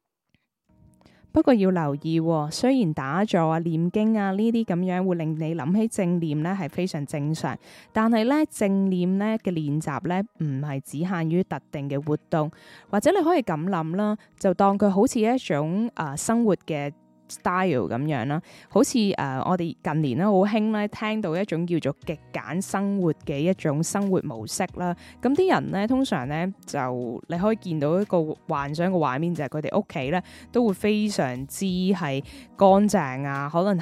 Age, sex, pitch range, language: 10-29, female, 155-210 Hz, Chinese